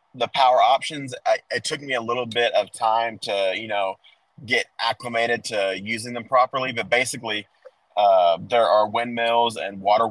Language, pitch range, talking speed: English, 105-125 Hz, 165 wpm